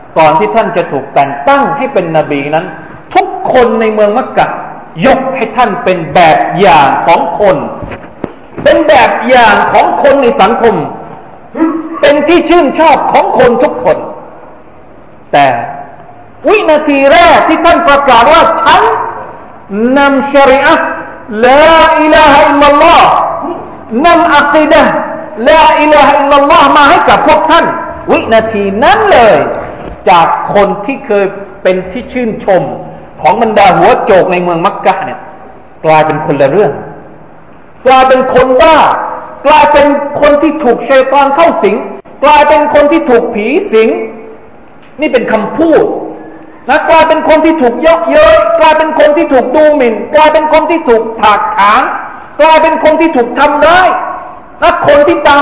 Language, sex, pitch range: Thai, male, 235-315 Hz